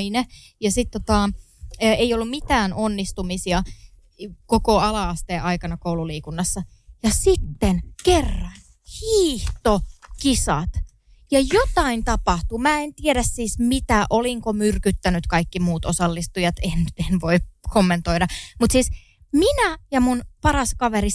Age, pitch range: 20-39, 200-300 Hz